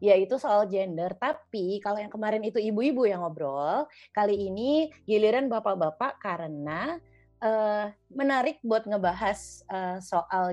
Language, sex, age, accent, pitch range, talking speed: Indonesian, female, 20-39, native, 170-215 Hz, 125 wpm